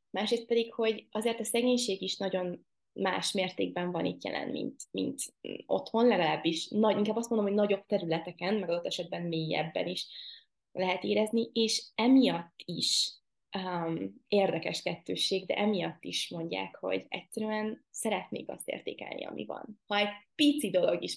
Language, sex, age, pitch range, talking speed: Hungarian, female, 20-39, 180-225 Hz, 150 wpm